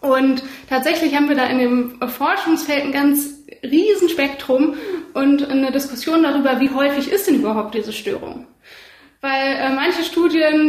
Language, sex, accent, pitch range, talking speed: German, female, German, 260-315 Hz, 150 wpm